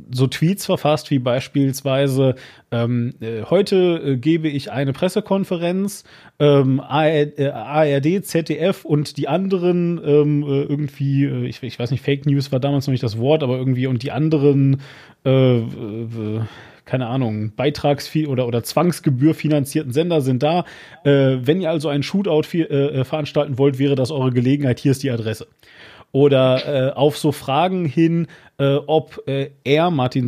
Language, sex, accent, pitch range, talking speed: German, male, German, 125-150 Hz, 165 wpm